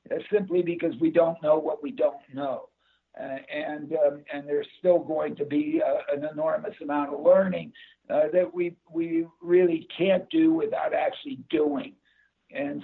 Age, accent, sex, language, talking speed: 60-79, American, male, English, 165 wpm